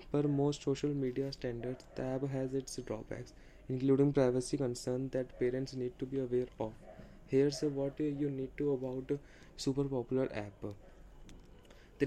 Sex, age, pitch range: male, 20-39, 130-140 Hz